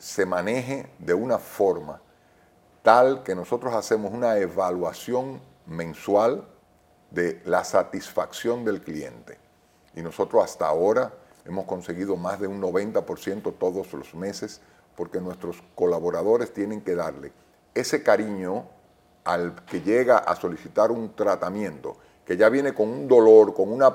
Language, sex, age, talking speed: Spanish, male, 40-59, 135 wpm